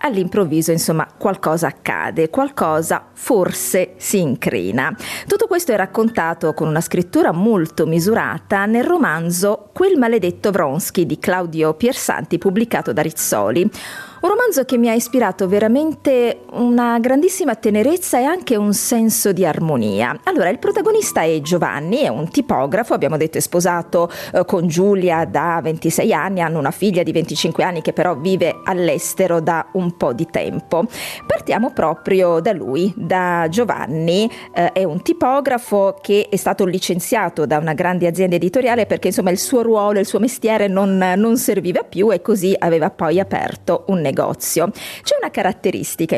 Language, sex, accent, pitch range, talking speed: Italian, female, native, 175-235 Hz, 155 wpm